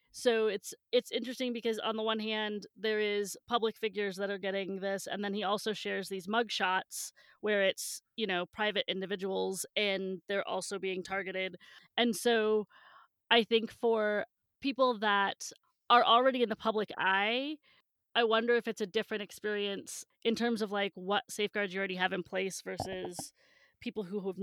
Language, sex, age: English, female, 20-39